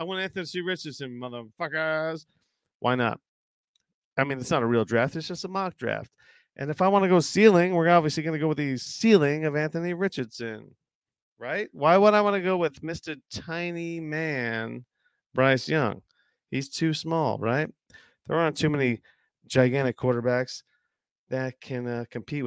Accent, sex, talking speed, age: American, male, 170 wpm, 40-59